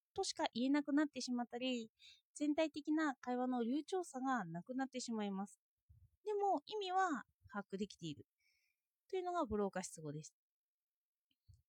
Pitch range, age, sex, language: 225-335 Hz, 20-39, female, Japanese